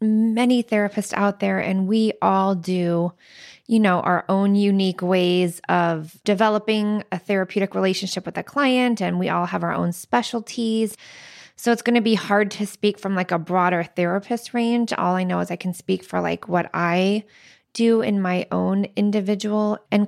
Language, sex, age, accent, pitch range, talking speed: English, female, 20-39, American, 180-215 Hz, 180 wpm